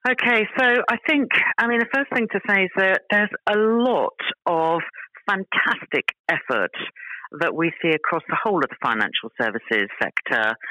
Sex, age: female, 50-69